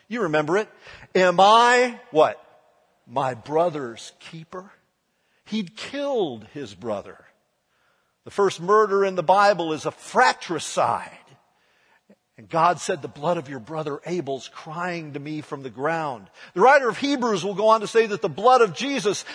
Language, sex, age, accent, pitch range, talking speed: English, male, 50-69, American, 175-235 Hz, 160 wpm